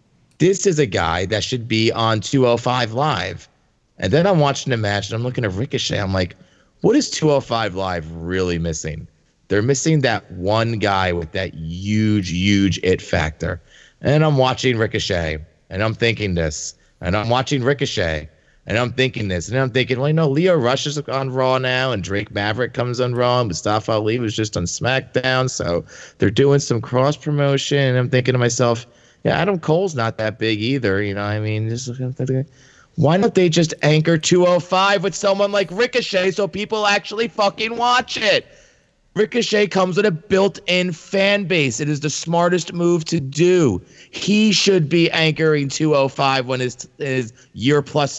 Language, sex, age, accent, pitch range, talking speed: English, male, 30-49, American, 110-155 Hz, 175 wpm